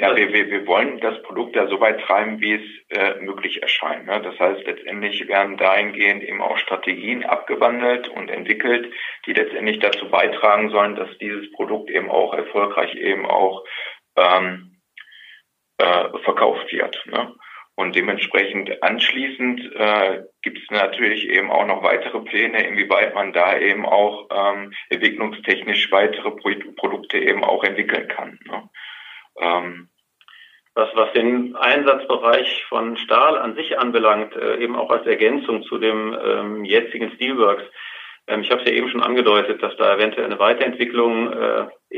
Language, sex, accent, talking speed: German, male, German, 155 wpm